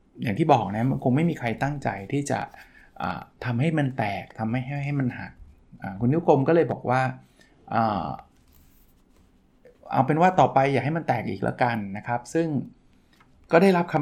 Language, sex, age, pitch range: Thai, male, 20-39, 115-150 Hz